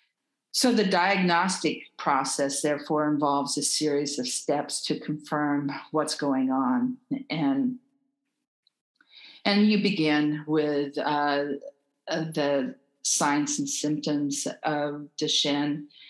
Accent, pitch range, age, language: American, 145-175 Hz, 50-69, English